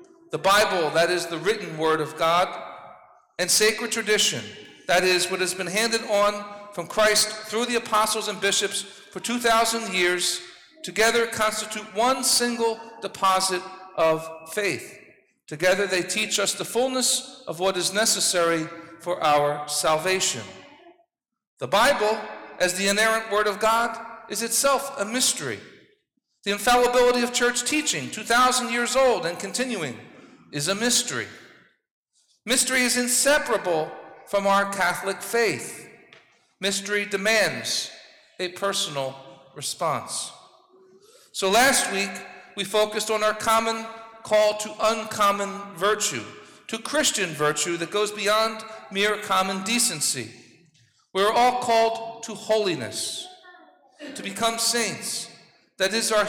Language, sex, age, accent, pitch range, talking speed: English, male, 50-69, American, 185-230 Hz, 125 wpm